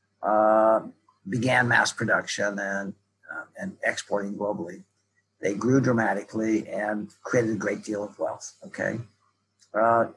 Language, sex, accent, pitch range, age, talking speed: English, male, American, 105-130 Hz, 60-79, 125 wpm